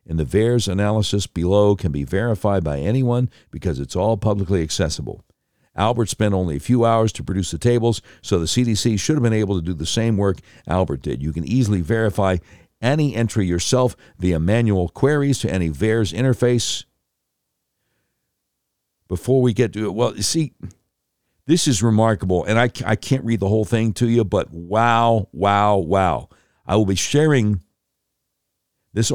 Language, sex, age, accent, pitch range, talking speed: English, male, 60-79, American, 90-115 Hz, 170 wpm